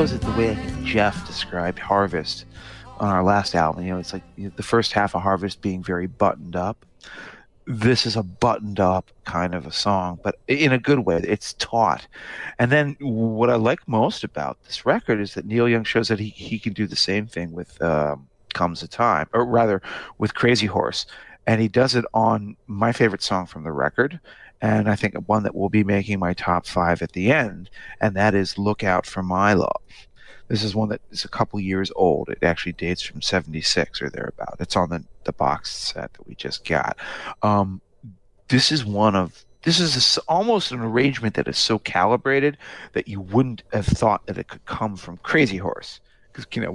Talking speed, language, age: 205 wpm, English, 40-59